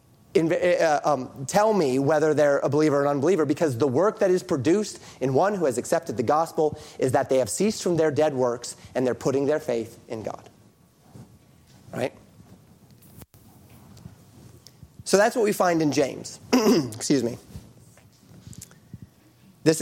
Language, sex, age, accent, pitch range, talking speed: English, male, 30-49, American, 125-170 Hz, 155 wpm